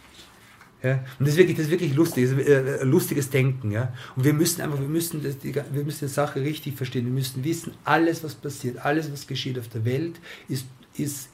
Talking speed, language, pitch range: 230 wpm, German, 130-160 Hz